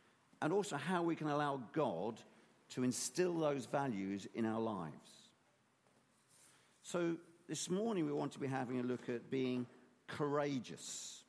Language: English